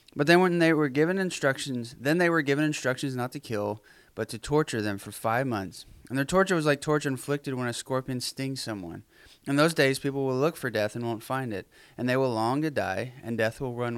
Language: English